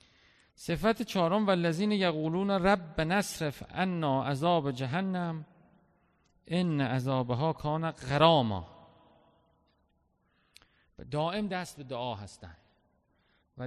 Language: Persian